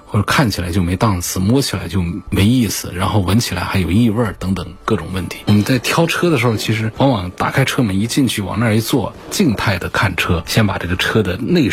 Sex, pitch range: male, 95-120 Hz